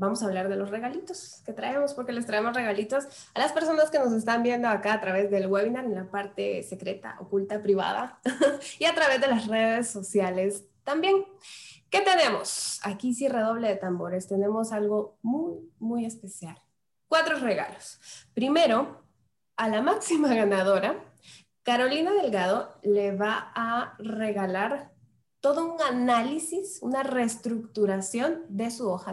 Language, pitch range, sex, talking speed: Spanish, 205-275 Hz, female, 145 wpm